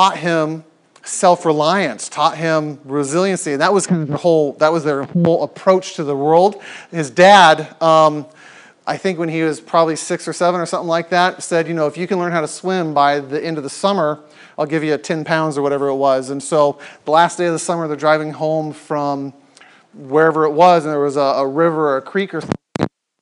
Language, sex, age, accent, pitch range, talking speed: English, male, 40-59, American, 155-185 Hz, 225 wpm